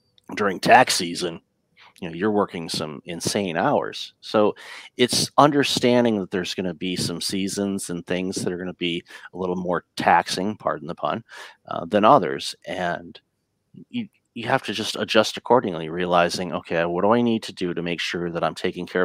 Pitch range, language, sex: 90-115 Hz, English, male